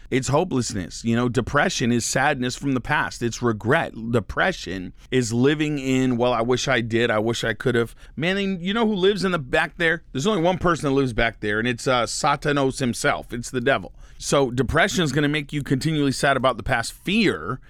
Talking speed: 215 wpm